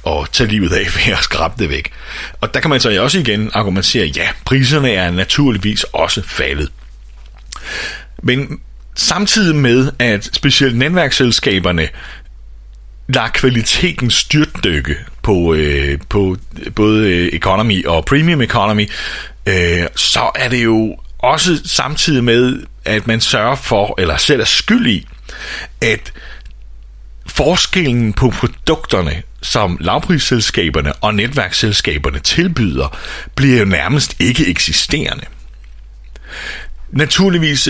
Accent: native